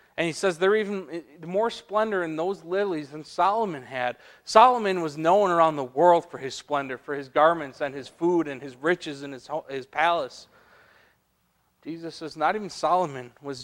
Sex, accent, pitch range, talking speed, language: male, American, 140-185 Hz, 185 wpm, English